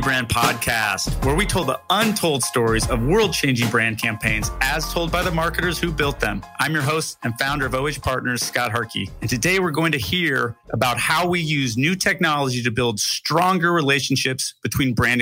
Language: English